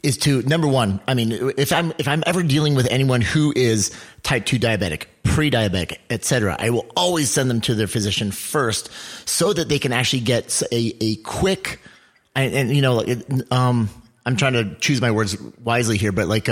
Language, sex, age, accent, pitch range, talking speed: English, male, 30-49, American, 115-140 Hz, 205 wpm